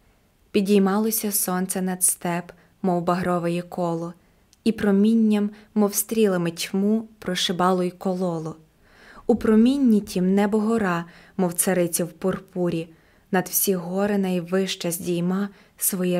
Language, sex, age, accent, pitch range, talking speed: Ukrainian, female, 20-39, native, 180-210 Hz, 105 wpm